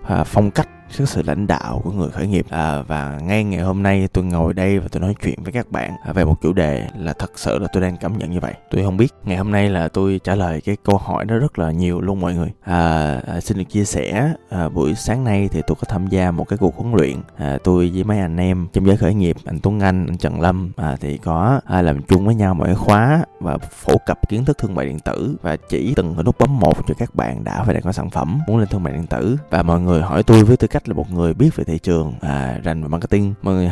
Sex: male